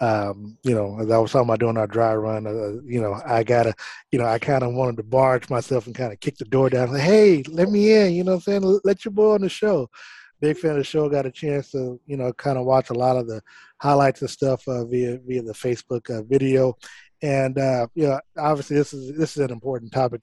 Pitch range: 120-145 Hz